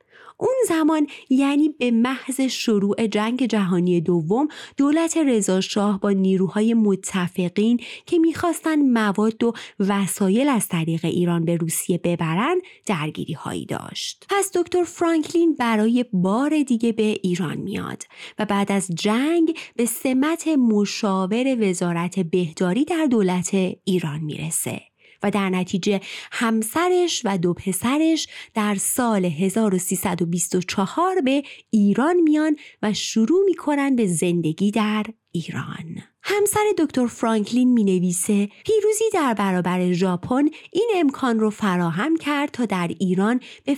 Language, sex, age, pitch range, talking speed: Persian, female, 30-49, 190-280 Hz, 120 wpm